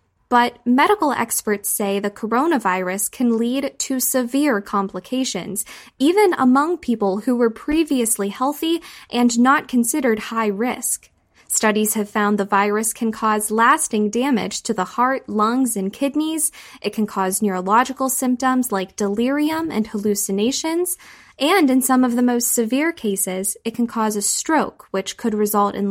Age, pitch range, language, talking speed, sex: 10-29, 205-265 Hz, English, 150 wpm, female